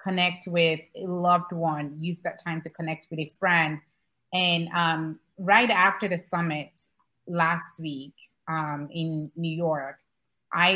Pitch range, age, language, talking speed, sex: 165-195 Hz, 30-49, English, 145 wpm, female